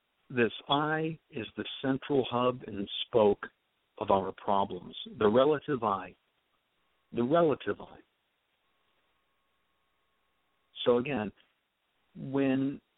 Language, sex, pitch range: English, male, 105-140 Hz